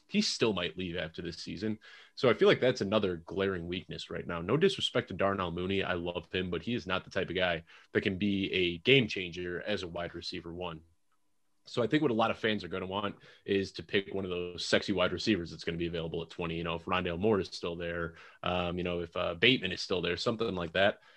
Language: English